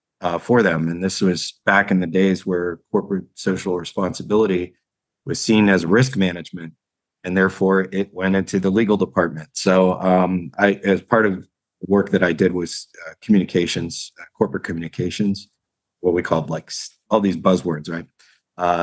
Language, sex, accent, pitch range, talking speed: English, male, American, 90-100 Hz, 170 wpm